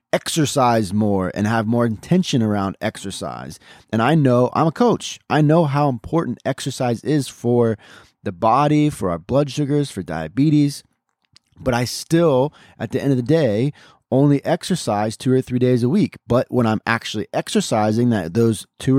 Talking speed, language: 170 wpm, English